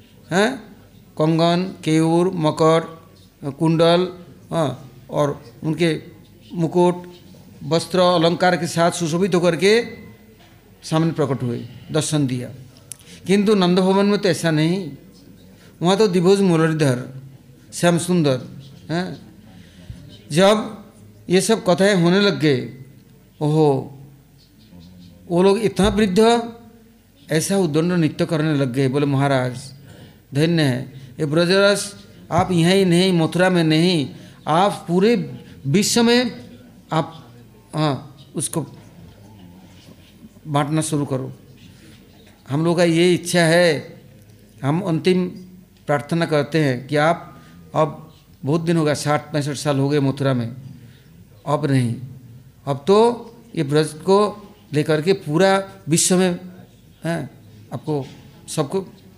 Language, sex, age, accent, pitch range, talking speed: English, male, 60-79, Indian, 135-180 Hz, 115 wpm